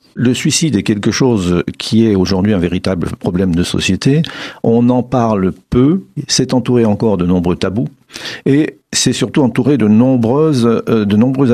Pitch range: 100-125 Hz